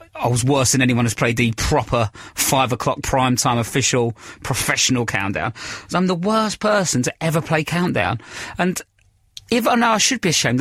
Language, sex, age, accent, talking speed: English, male, 30-49, British, 180 wpm